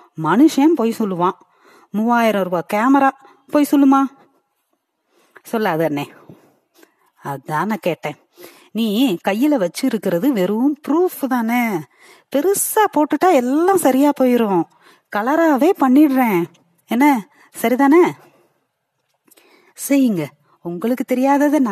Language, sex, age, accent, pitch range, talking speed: Tamil, female, 30-49, native, 195-285 Hz, 50 wpm